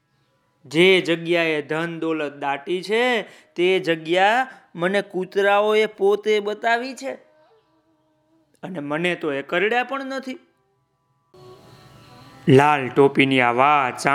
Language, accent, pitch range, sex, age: Gujarati, native, 145-205 Hz, male, 20-39